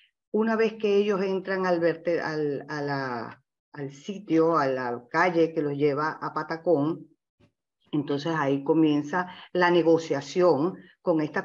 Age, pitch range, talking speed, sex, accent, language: 40-59, 150-180 Hz, 140 wpm, female, American, Spanish